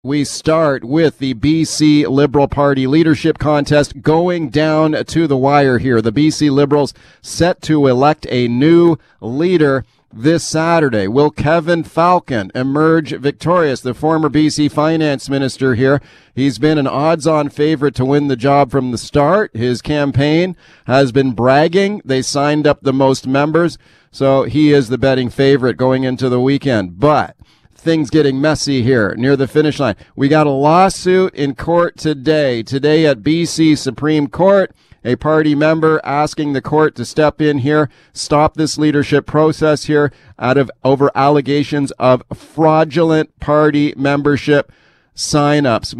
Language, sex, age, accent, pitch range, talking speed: English, male, 40-59, American, 135-155 Hz, 150 wpm